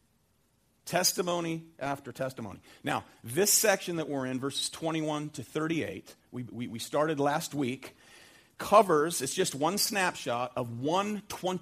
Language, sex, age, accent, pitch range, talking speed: English, male, 50-69, American, 130-175 Hz, 135 wpm